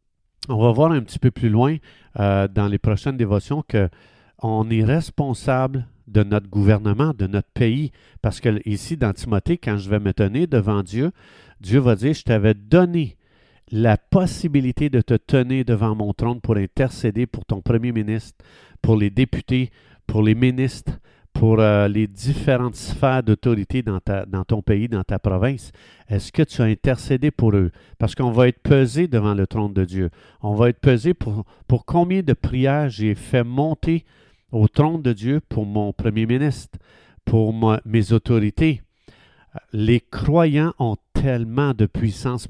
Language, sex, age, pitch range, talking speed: French, male, 50-69, 110-145 Hz, 170 wpm